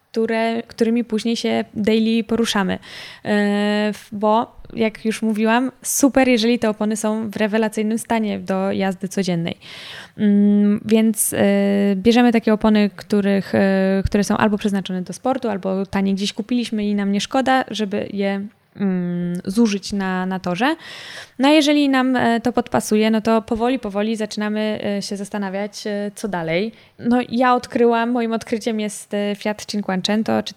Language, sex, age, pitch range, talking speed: Polish, female, 20-39, 205-235 Hz, 135 wpm